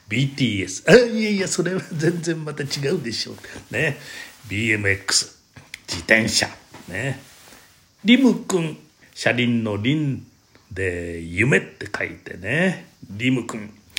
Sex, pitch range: male, 95-140 Hz